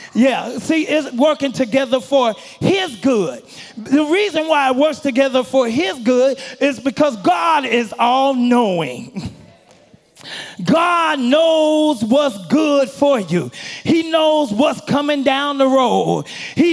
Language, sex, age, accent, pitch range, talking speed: English, male, 30-49, American, 265-315 Hz, 130 wpm